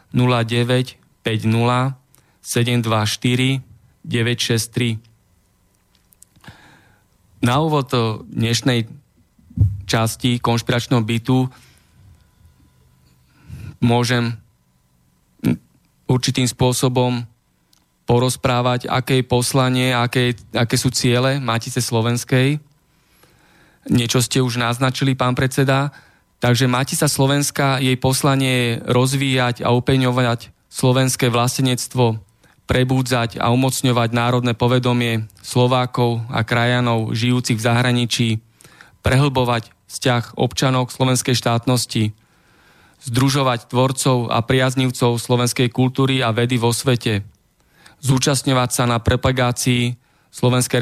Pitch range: 115-130 Hz